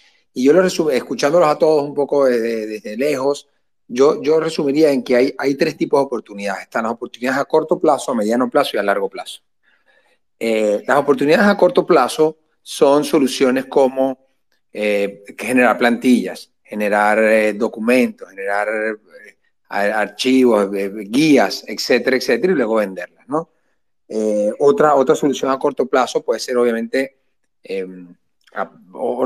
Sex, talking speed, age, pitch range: male, 155 wpm, 30-49, 115-155 Hz